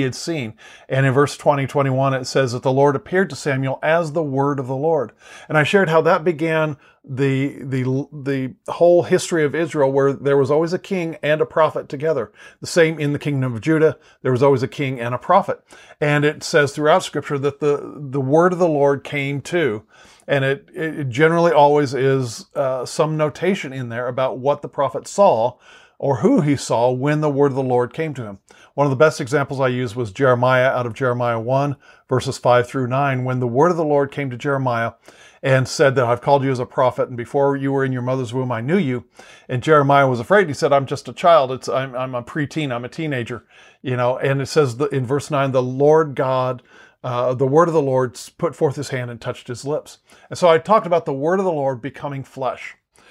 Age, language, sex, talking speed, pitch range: 40-59, English, male, 230 wpm, 130-155 Hz